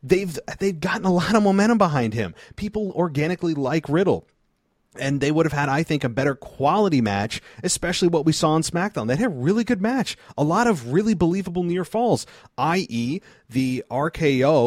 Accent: American